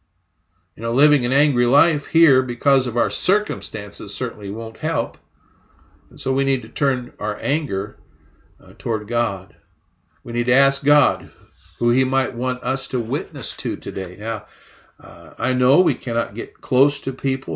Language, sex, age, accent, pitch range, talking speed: English, male, 50-69, American, 110-145 Hz, 170 wpm